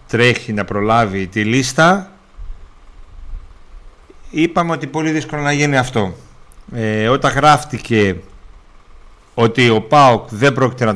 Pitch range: 100-140 Hz